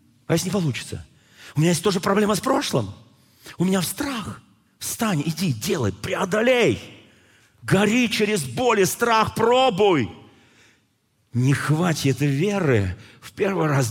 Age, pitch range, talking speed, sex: 40-59, 120-190 Hz, 135 wpm, male